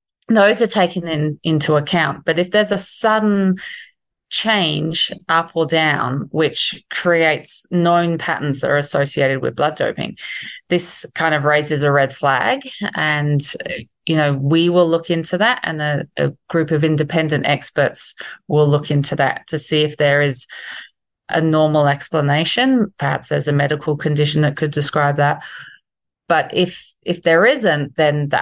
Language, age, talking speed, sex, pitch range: English, 30-49, 160 wpm, female, 145-175 Hz